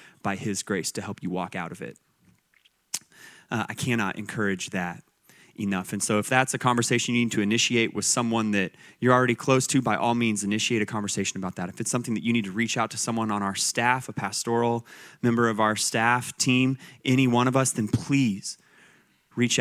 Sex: male